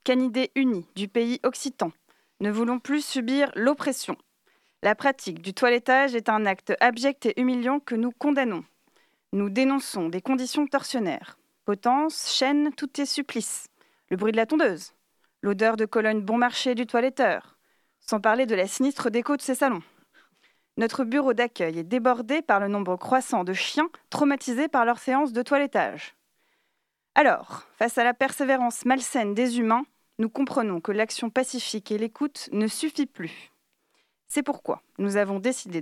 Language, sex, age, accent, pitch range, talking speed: French, female, 20-39, French, 220-270 Hz, 155 wpm